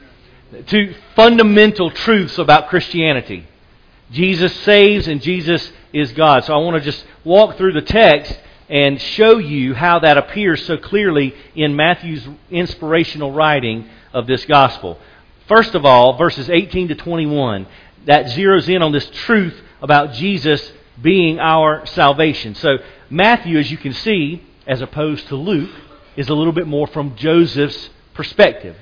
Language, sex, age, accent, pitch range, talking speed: English, male, 40-59, American, 135-175 Hz, 150 wpm